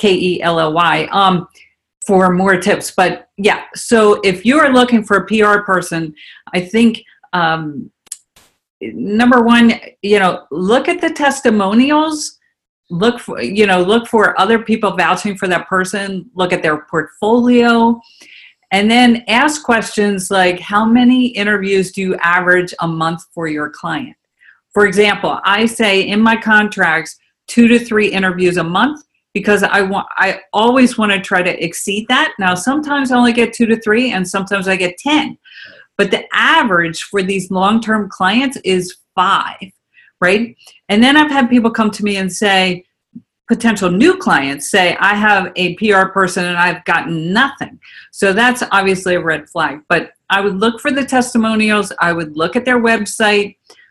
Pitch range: 185-235 Hz